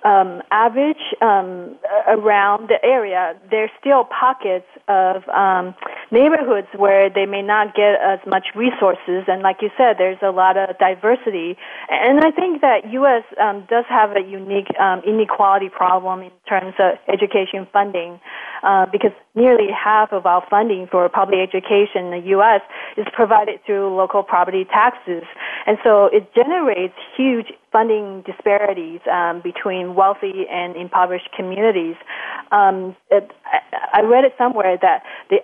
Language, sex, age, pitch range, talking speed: English, female, 30-49, 185-230 Hz, 145 wpm